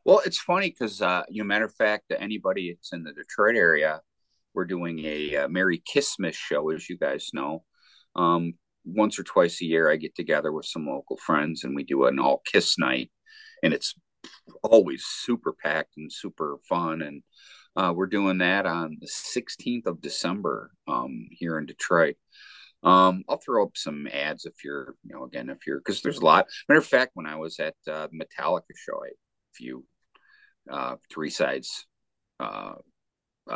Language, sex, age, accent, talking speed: English, male, 50-69, American, 180 wpm